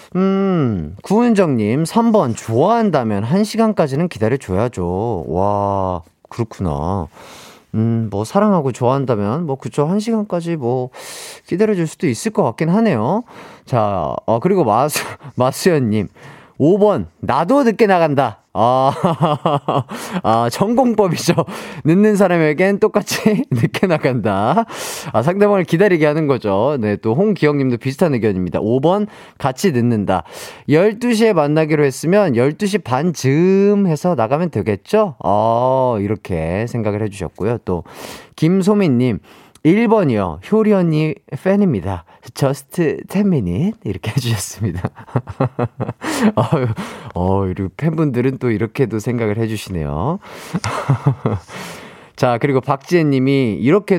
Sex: male